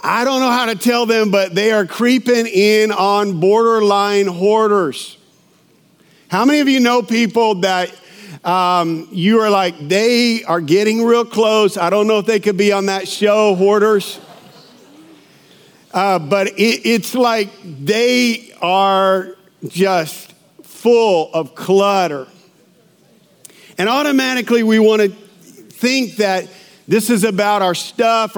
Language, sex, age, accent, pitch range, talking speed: English, male, 50-69, American, 190-230 Hz, 135 wpm